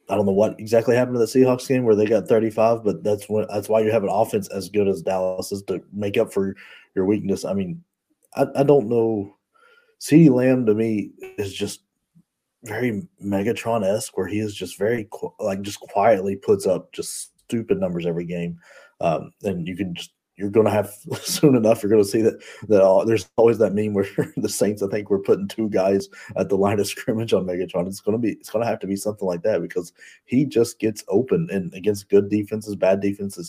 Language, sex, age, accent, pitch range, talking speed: English, male, 30-49, American, 95-110 Hz, 220 wpm